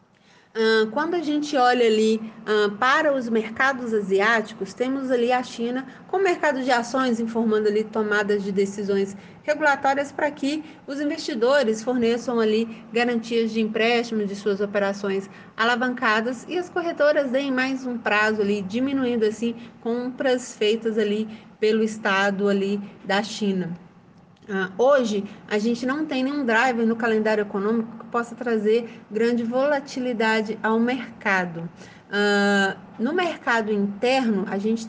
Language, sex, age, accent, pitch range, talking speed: Portuguese, female, 30-49, Brazilian, 205-255 Hz, 130 wpm